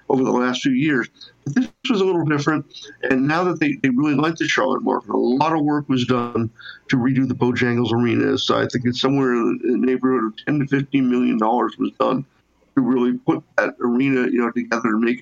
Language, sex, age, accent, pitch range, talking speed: English, male, 50-69, American, 120-150 Hz, 230 wpm